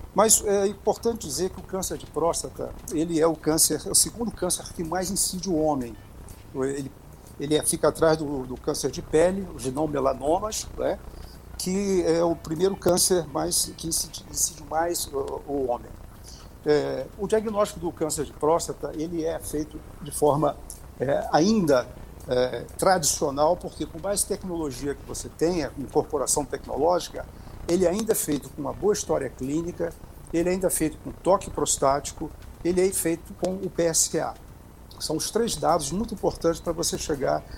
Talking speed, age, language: 170 wpm, 60-79, Portuguese